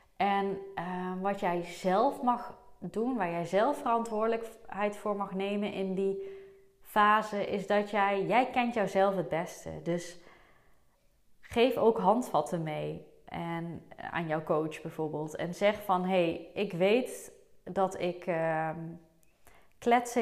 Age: 20-39